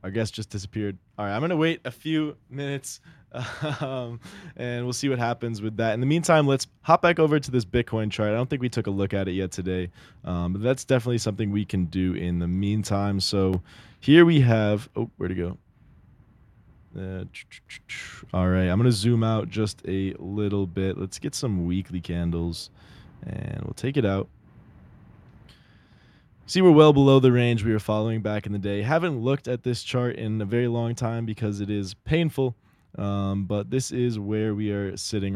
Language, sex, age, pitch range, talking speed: English, male, 20-39, 100-125 Hz, 200 wpm